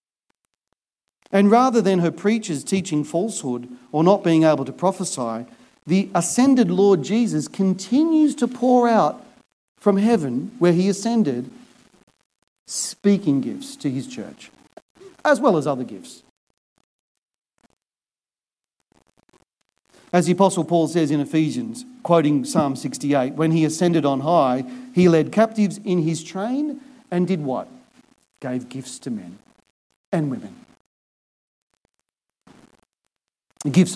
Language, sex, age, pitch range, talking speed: English, male, 40-59, 135-205 Hz, 120 wpm